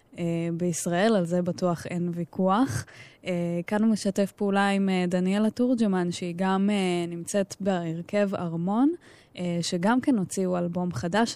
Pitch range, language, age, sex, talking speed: 175-200 Hz, Hebrew, 10-29, female, 120 wpm